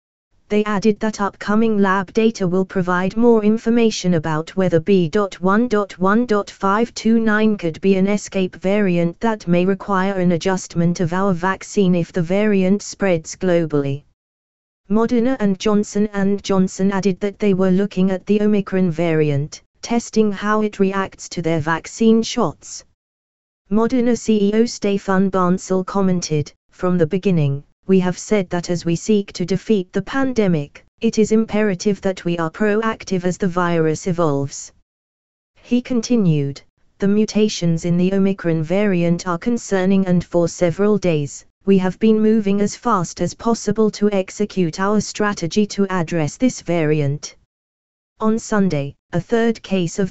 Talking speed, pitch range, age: 140 wpm, 170-210 Hz, 20-39